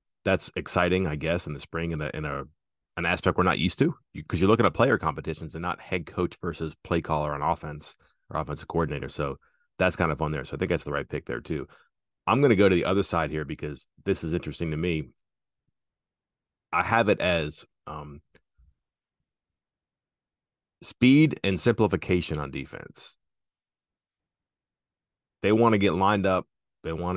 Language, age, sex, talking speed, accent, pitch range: English, 30-49, male, 185 wpm, American, 75-95 Hz